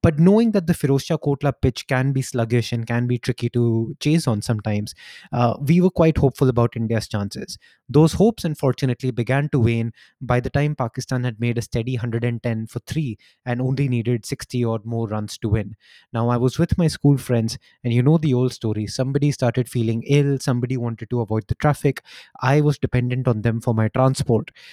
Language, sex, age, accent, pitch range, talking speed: English, male, 20-39, Indian, 115-135 Hz, 200 wpm